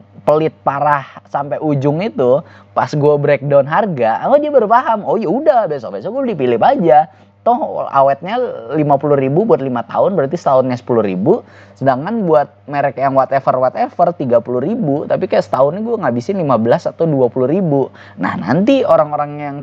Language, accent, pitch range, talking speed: Indonesian, native, 105-160 Hz, 155 wpm